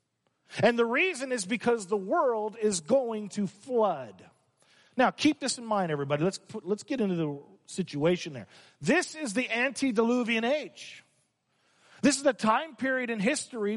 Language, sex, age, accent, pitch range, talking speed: English, male, 40-59, American, 200-275 Hz, 160 wpm